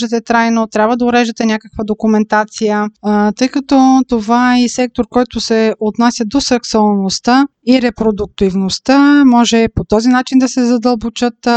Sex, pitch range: female, 210-250 Hz